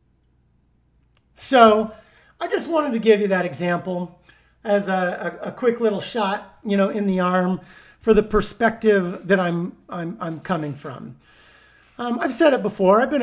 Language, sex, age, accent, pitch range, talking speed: English, male, 40-59, American, 175-225 Hz, 170 wpm